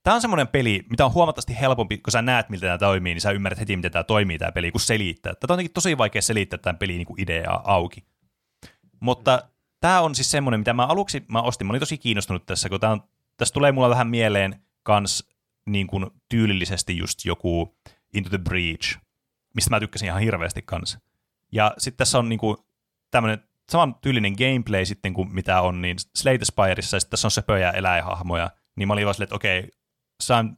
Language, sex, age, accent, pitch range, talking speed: Finnish, male, 30-49, native, 95-120 Hz, 200 wpm